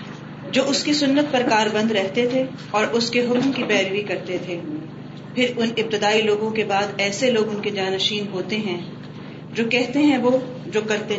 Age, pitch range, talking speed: 30-49, 185-235 Hz, 190 wpm